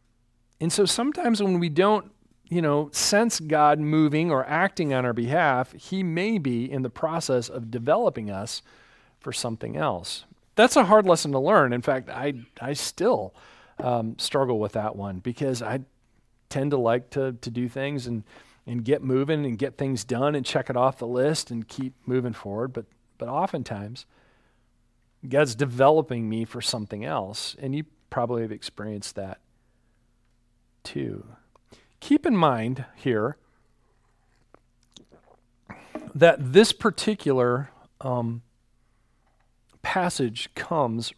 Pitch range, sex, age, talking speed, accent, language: 120-155 Hz, male, 40-59, 140 wpm, American, English